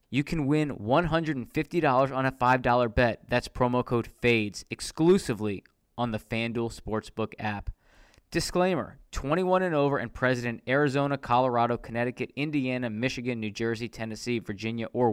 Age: 20-39